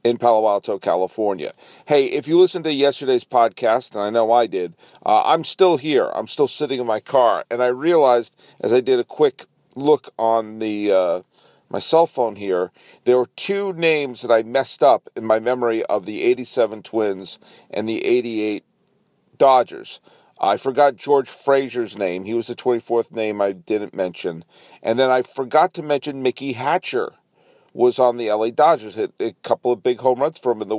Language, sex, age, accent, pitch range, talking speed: English, male, 40-59, American, 110-145 Hz, 190 wpm